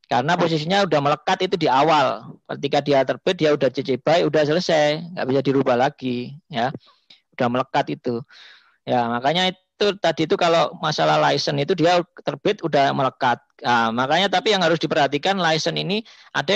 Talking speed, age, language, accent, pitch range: 165 wpm, 20-39, Indonesian, native, 135-170 Hz